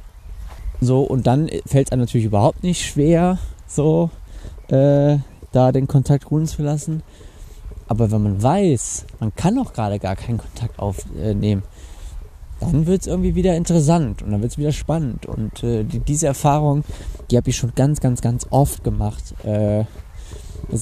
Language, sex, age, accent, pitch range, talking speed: German, male, 20-39, German, 95-135 Hz, 165 wpm